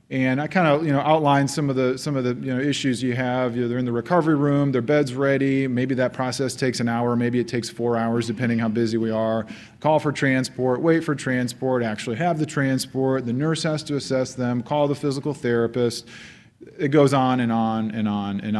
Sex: male